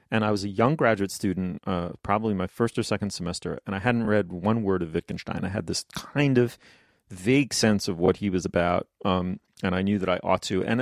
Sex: male